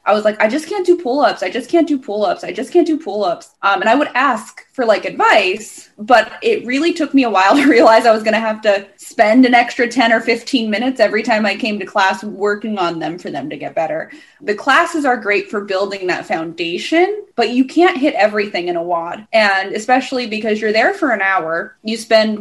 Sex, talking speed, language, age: female, 235 wpm, English, 10-29